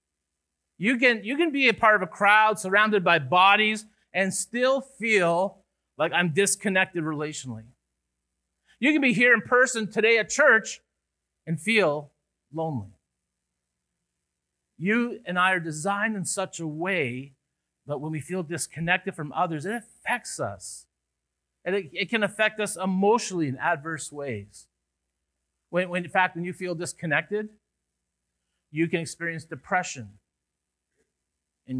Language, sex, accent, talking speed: English, male, American, 135 wpm